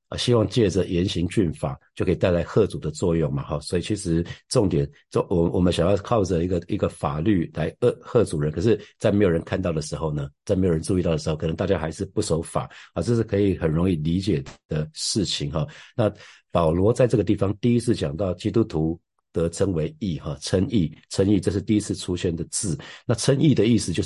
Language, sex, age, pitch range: Chinese, male, 50-69, 85-105 Hz